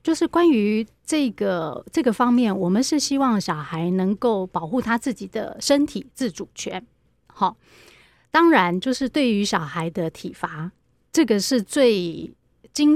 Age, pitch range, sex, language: 30-49, 185-250 Hz, female, Chinese